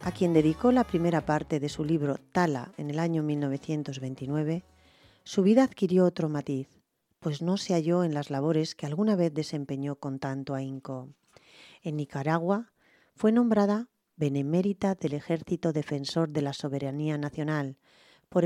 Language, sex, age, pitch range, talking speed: English, female, 40-59, 145-185 Hz, 150 wpm